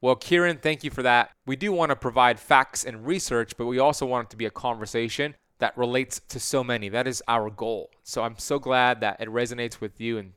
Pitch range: 115-145 Hz